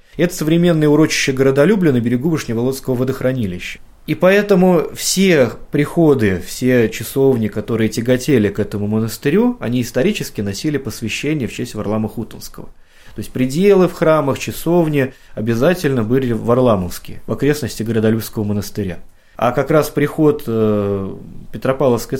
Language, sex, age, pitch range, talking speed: Russian, male, 20-39, 110-150 Hz, 125 wpm